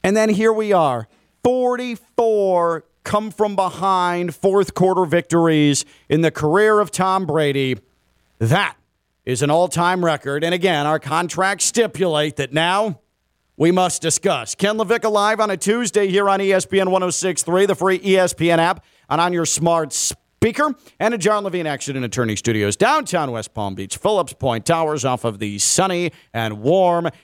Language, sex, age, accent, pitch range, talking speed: English, male, 40-59, American, 140-200 Hz, 155 wpm